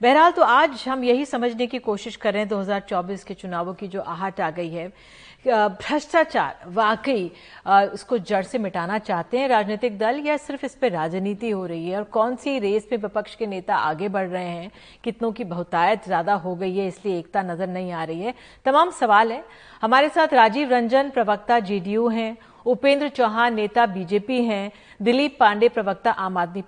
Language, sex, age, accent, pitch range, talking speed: Hindi, female, 50-69, native, 205-265 Hz, 190 wpm